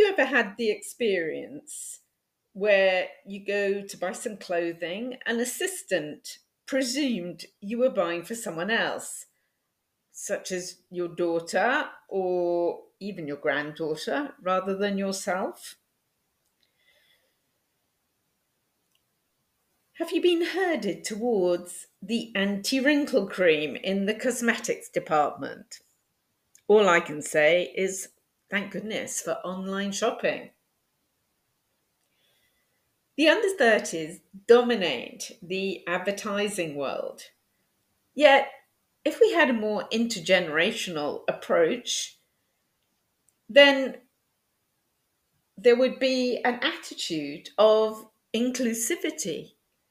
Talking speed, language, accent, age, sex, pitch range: 90 wpm, English, British, 50-69, female, 185-255 Hz